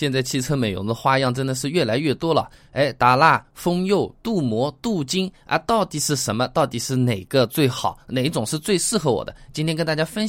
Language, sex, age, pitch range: Chinese, male, 20-39, 125-180 Hz